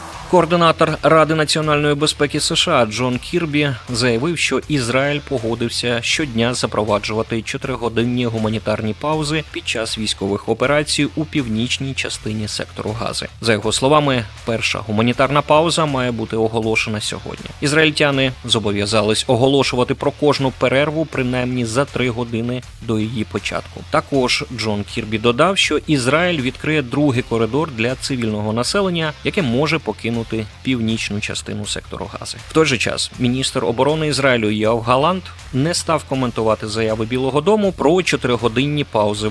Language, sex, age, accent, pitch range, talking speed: Ukrainian, male, 20-39, native, 110-145 Hz, 130 wpm